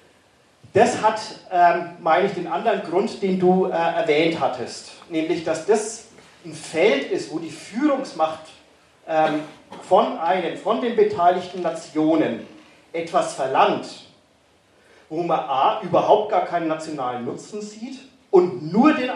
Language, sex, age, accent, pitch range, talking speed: German, male, 40-59, German, 160-220 Hz, 135 wpm